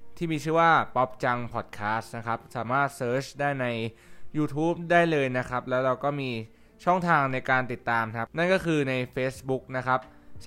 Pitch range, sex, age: 110-140 Hz, male, 20-39